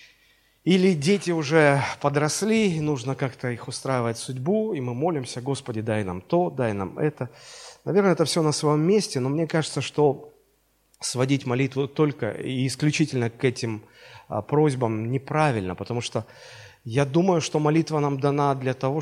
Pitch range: 125-165 Hz